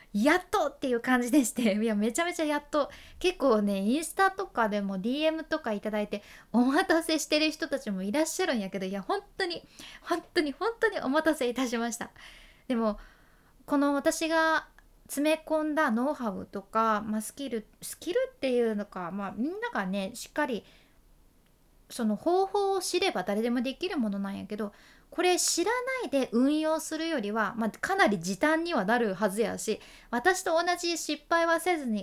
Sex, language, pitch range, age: female, Japanese, 220-325 Hz, 20-39